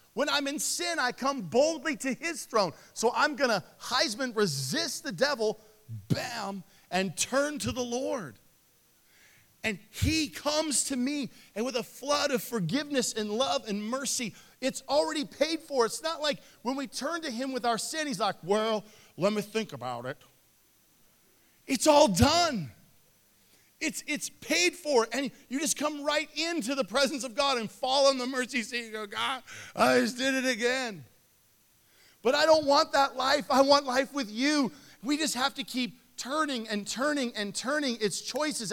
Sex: male